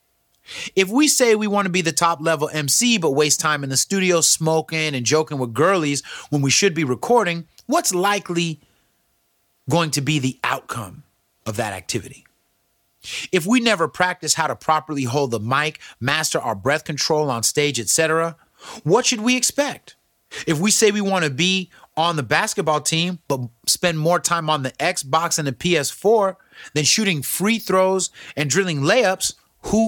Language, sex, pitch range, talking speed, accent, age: English, male, 140-180 Hz, 175 wpm, American, 30-49